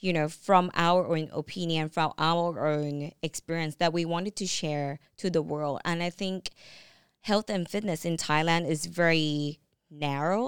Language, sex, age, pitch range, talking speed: English, female, 20-39, 155-185 Hz, 165 wpm